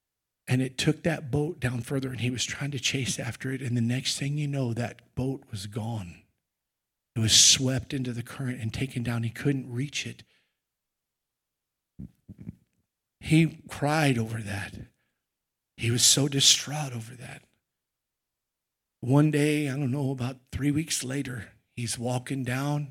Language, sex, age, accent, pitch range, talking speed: English, male, 50-69, American, 125-150 Hz, 155 wpm